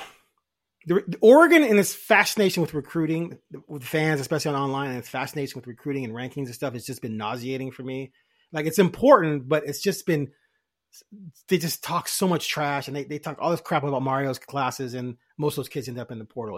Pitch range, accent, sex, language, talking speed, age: 140-205 Hz, American, male, English, 220 wpm, 30-49